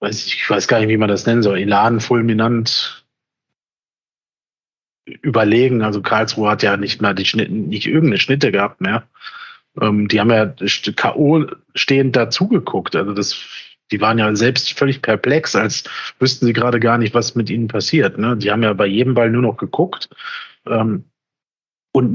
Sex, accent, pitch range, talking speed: male, German, 115-160 Hz, 160 wpm